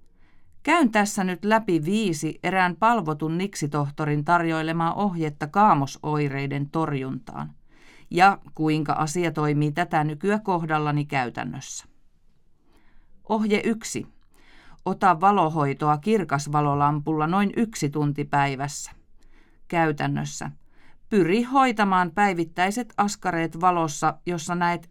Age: 40-59